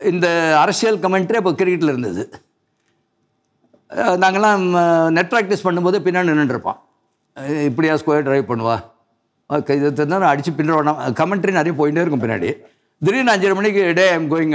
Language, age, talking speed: Tamil, 60-79, 140 wpm